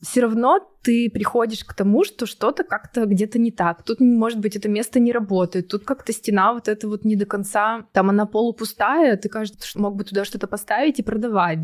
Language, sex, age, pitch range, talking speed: Russian, female, 20-39, 190-225 Hz, 210 wpm